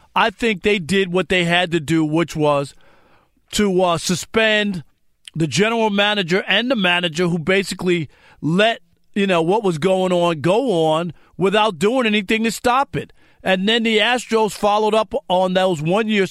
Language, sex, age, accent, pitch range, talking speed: English, male, 40-59, American, 175-210 Hz, 170 wpm